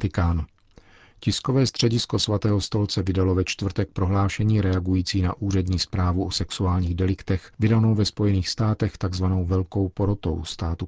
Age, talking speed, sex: 50-69, 130 wpm, male